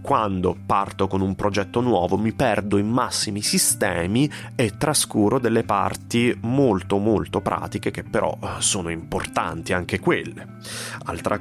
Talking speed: 130 wpm